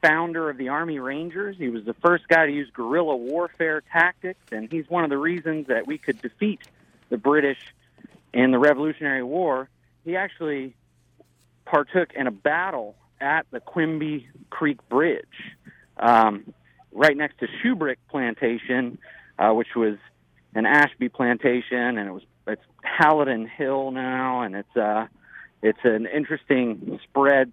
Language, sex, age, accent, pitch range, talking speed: English, male, 40-59, American, 120-155 Hz, 150 wpm